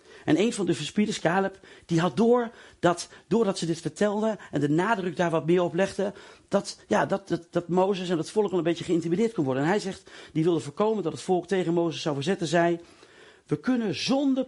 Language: Dutch